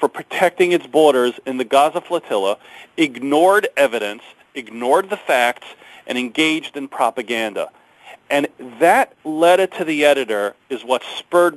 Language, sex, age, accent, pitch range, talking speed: English, male, 40-59, American, 155-225 Hz, 135 wpm